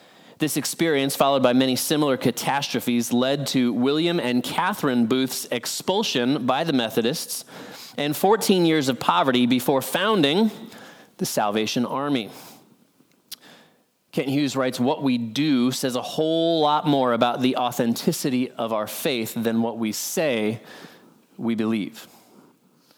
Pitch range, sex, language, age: 130-185 Hz, male, English, 30-49